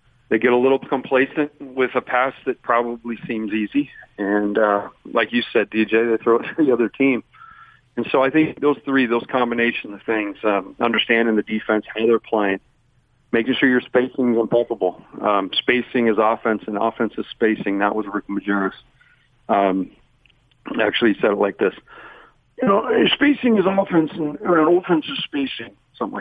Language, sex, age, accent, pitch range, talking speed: English, male, 40-59, American, 110-130 Hz, 175 wpm